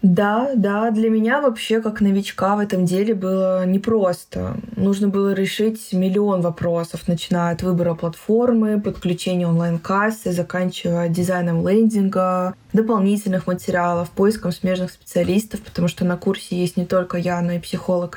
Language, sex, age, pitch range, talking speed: Russian, female, 20-39, 175-200 Hz, 140 wpm